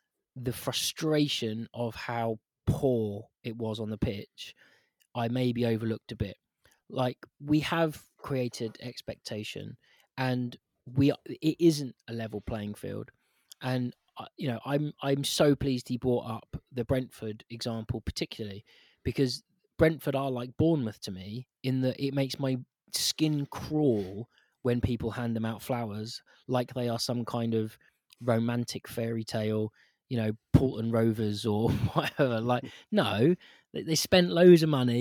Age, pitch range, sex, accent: 20-39, 115-140 Hz, male, British